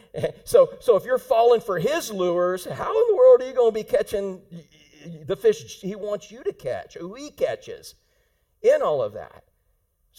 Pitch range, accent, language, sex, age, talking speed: 145-230 Hz, American, English, male, 50-69, 195 wpm